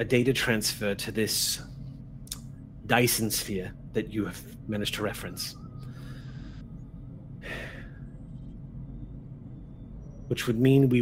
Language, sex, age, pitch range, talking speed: English, male, 30-49, 115-135 Hz, 95 wpm